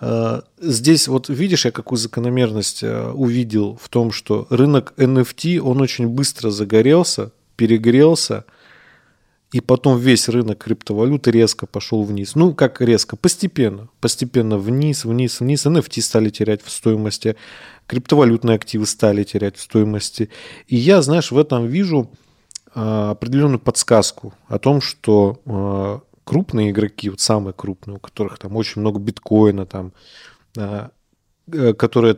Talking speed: 125 wpm